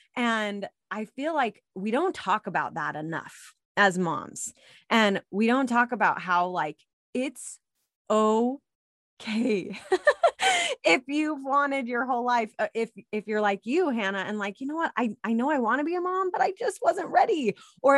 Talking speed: 175 wpm